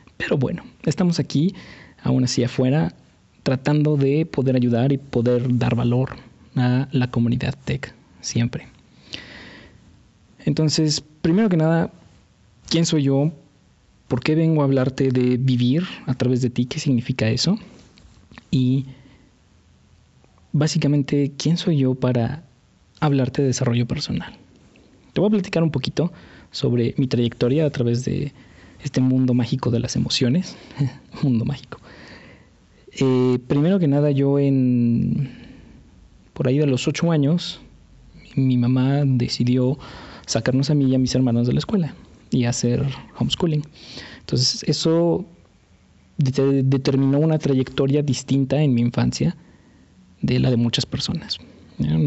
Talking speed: 135 wpm